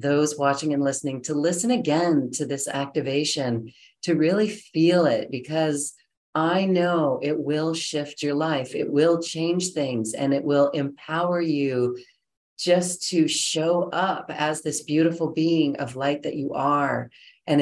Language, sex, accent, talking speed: English, female, American, 155 wpm